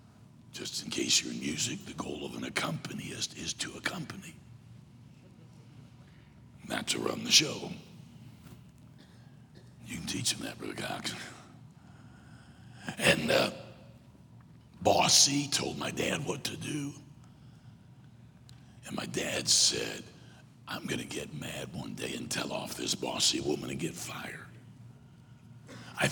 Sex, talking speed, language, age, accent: male, 130 wpm, English, 60-79, American